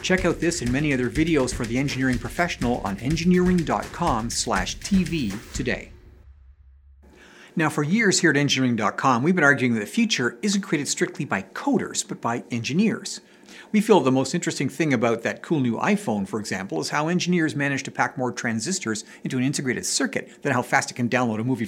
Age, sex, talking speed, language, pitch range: 50-69, male, 185 wpm, English, 125-180 Hz